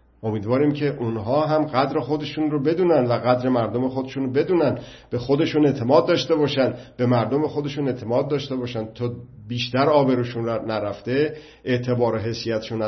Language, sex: Persian, male